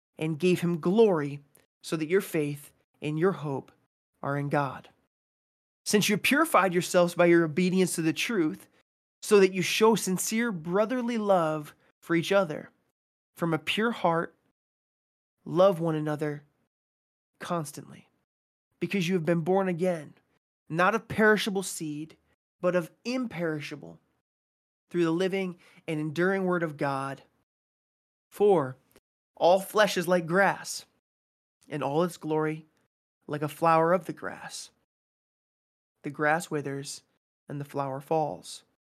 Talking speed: 135 wpm